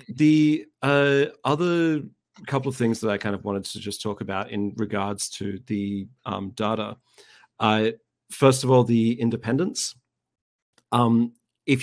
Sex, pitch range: male, 105-125 Hz